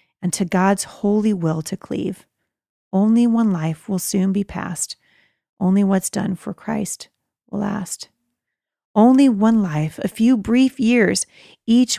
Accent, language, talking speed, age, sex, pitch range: American, English, 145 wpm, 40-59, female, 185-230 Hz